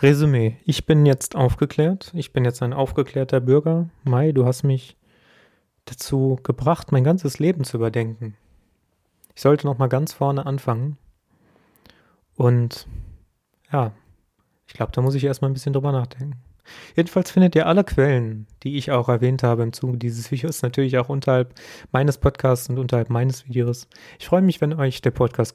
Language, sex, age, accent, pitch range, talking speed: German, male, 30-49, German, 120-145 Hz, 165 wpm